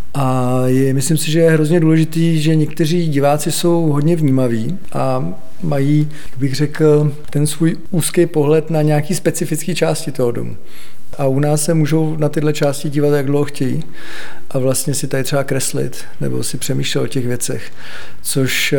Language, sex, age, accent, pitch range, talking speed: Czech, male, 40-59, native, 130-150 Hz, 170 wpm